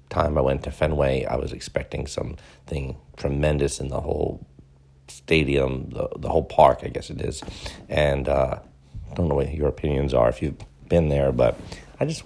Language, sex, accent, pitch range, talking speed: English, male, American, 65-75 Hz, 185 wpm